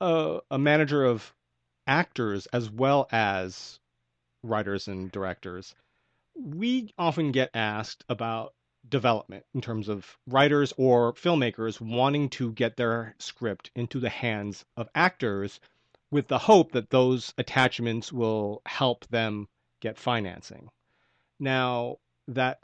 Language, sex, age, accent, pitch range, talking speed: English, male, 30-49, American, 105-130 Hz, 120 wpm